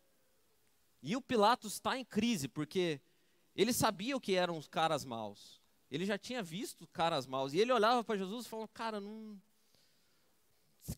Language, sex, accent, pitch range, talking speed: Portuguese, male, Brazilian, 180-260 Hz, 165 wpm